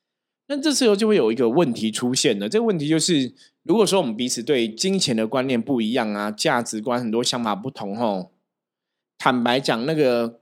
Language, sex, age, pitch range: Chinese, male, 20-39, 110-150 Hz